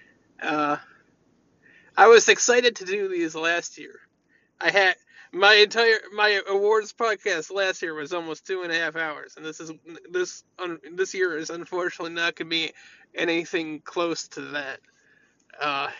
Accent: American